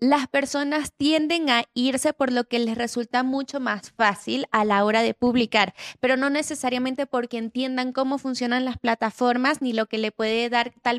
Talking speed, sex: 185 wpm, female